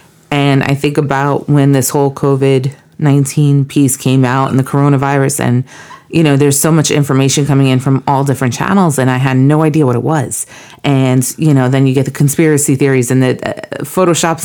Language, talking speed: English, 200 wpm